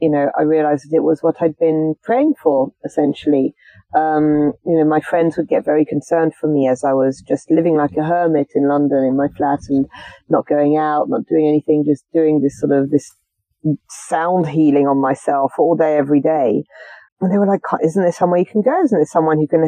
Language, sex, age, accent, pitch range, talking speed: English, female, 40-59, British, 155-260 Hz, 225 wpm